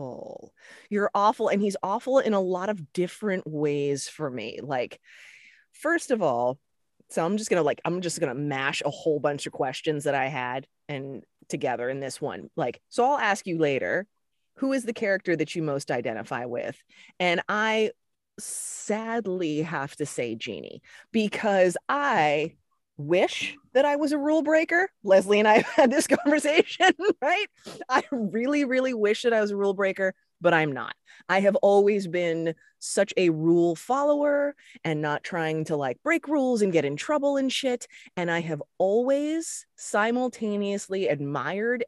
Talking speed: 170 wpm